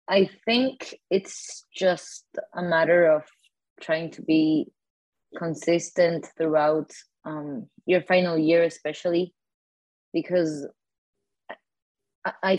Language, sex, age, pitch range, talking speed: English, female, 20-39, 150-170 Hz, 90 wpm